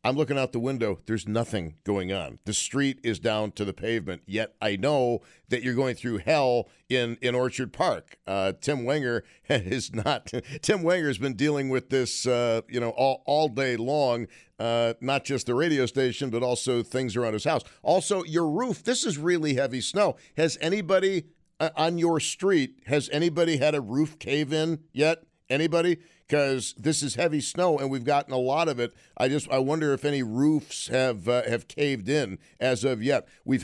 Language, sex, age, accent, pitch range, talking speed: English, male, 50-69, American, 120-145 Hz, 195 wpm